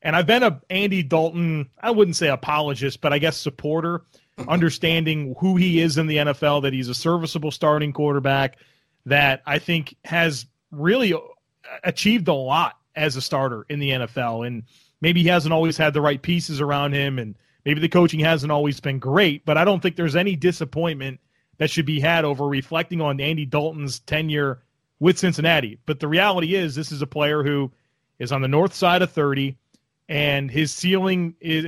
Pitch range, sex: 140-170 Hz, male